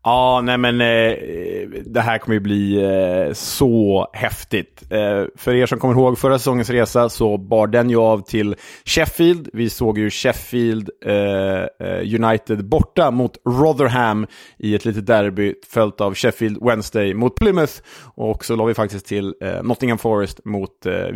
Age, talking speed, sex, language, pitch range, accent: 30-49, 165 wpm, male, Swedish, 110-135 Hz, Norwegian